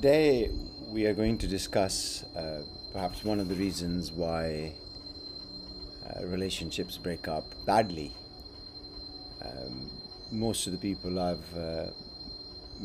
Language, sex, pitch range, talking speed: English, male, 80-100 Hz, 115 wpm